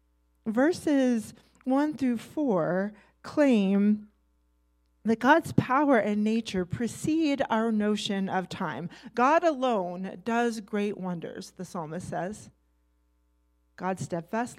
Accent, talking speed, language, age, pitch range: American, 105 wpm, English, 40-59, 180-230 Hz